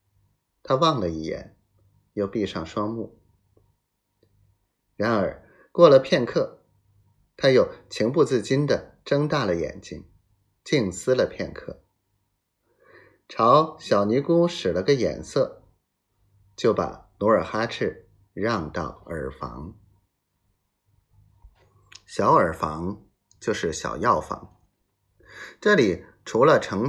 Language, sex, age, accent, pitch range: Chinese, male, 30-49, native, 95-115 Hz